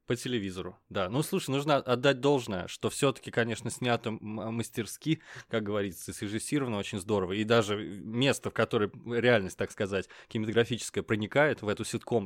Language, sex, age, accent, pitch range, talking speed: Russian, male, 20-39, native, 105-130 Hz, 155 wpm